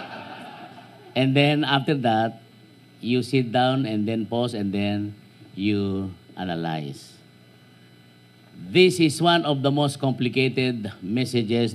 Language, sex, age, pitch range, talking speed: Filipino, male, 50-69, 90-145 Hz, 110 wpm